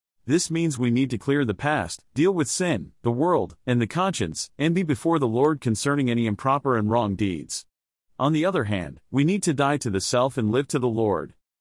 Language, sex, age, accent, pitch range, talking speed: English, male, 40-59, American, 110-150 Hz, 220 wpm